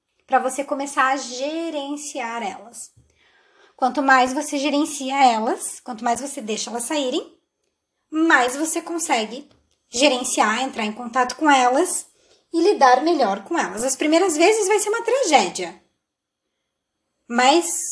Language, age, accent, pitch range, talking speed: Portuguese, 20-39, Brazilian, 245-345 Hz, 130 wpm